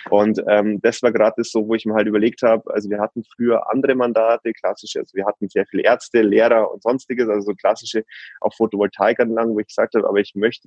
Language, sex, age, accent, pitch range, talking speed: German, male, 20-39, German, 105-125 Hz, 230 wpm